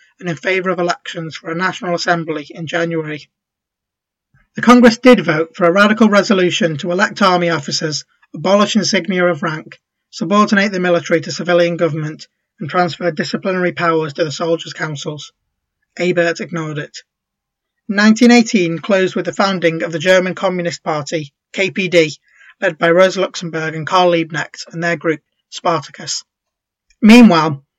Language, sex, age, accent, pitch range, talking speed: English, male, 20-39, British, 165-190 Hz, 145 wpm